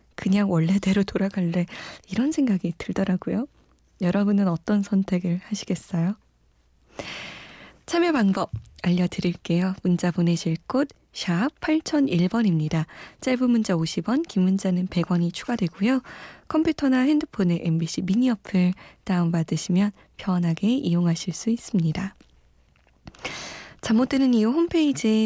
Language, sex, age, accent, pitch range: Korean, female, 20-39, native, 175-225 Hz